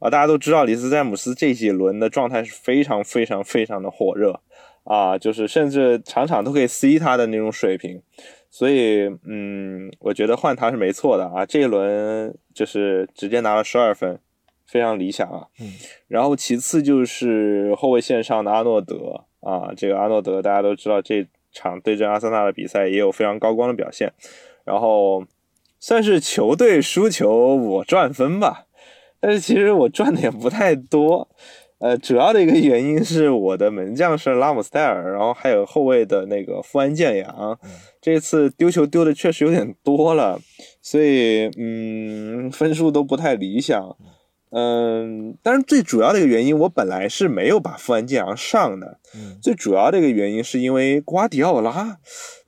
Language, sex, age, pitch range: Chinese, male, 20-39, 105-155 Hz